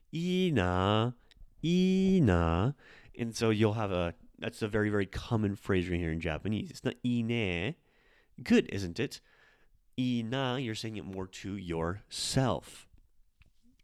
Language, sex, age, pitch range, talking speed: English, male, 20-39, 95-120 Hz, 125 wpm